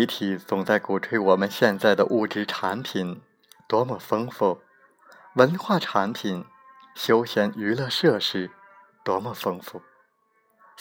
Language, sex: Chinese, male